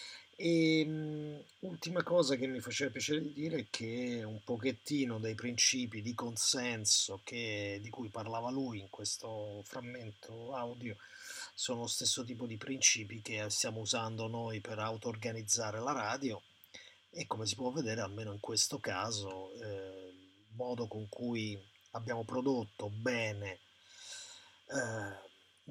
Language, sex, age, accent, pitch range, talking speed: Italian, male, 30-49, native, 105-125 Hz, 135 wpm